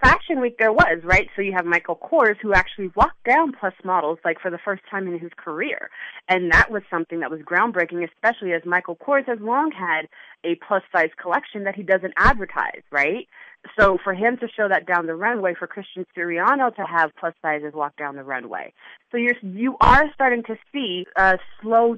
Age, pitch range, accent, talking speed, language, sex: 30-49, 165-205 Hz, American, 205 wpm, English, female